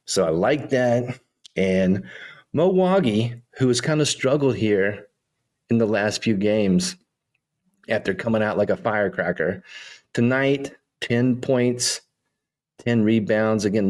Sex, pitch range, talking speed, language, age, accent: male, 100-135 Hz, 125 wpm, English, 30-49, American